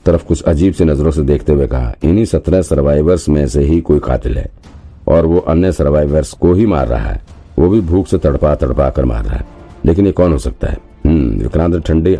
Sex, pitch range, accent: male, 70-85 Hz, native